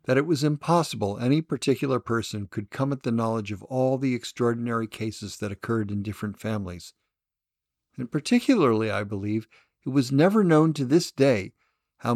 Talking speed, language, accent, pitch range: 170 wpm, English, American, 105-130 Hz